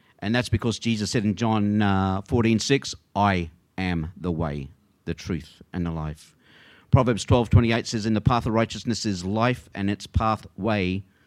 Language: English